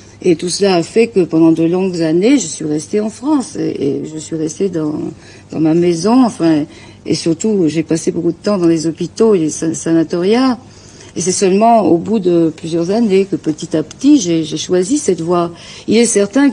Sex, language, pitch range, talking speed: female, English, 165-210 Hz, 215 wpm